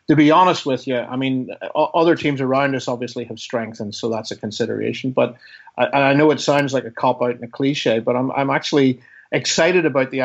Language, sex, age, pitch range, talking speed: English, male, 50-69, 120-150 Hz, 220 wpm